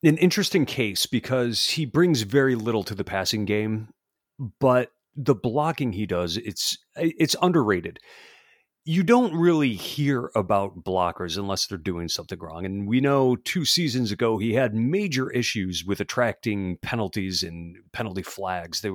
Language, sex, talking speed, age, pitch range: English, male, 150 wpm, 40-59, 105-145 Hz